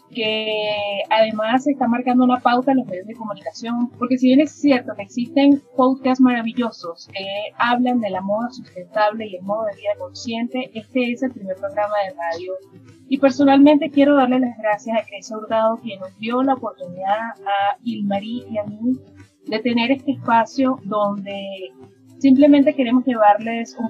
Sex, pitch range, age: female, 200-255 Hz, 30-49